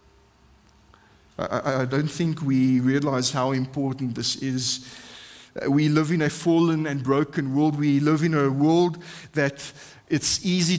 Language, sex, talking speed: English, male, 140 wpm